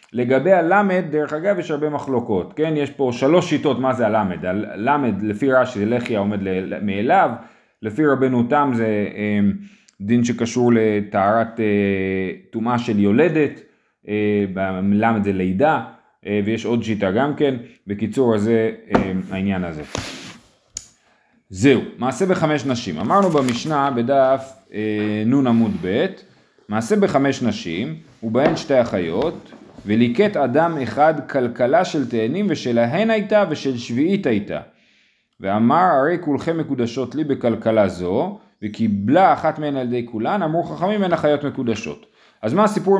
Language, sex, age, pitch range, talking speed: Hebrew, male, 30-49, 115-165 Hz, 130 wpm